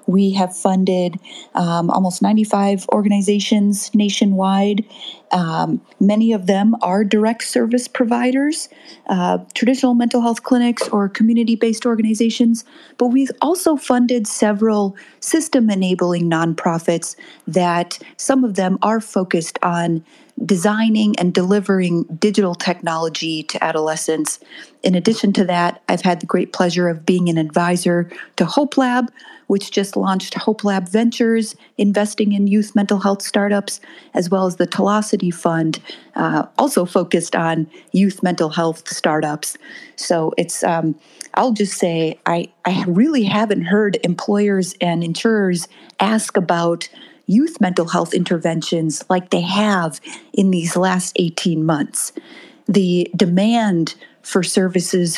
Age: 30-49